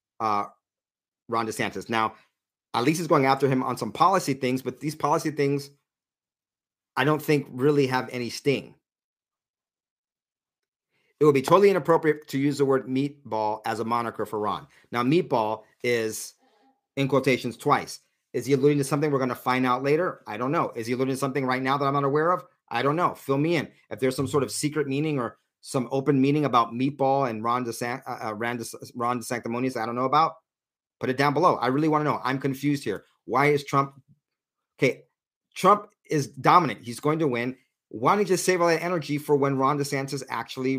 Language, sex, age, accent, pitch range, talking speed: English, male, 40-59, American, 125-150 Hz, 205 wpm